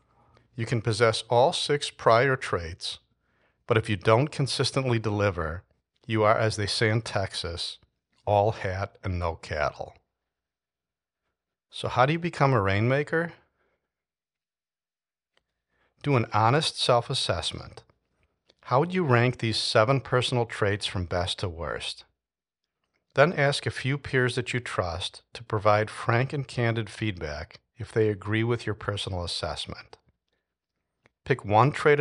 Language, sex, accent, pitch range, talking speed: English, male, American, 95-125 Hz, 135 wpm